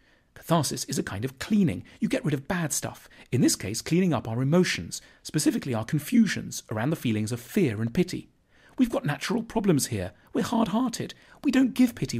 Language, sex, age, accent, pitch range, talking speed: English, male, 40-59, British, 110-170 Hz, 195 wpm